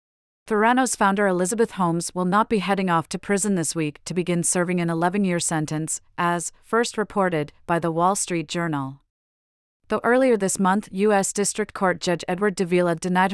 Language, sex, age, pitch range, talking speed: English, female, 30-49, 170-200 Hz, 170 wpm